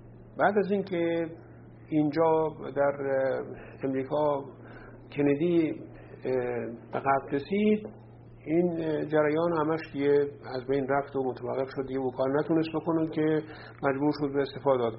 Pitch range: 125-155 Hz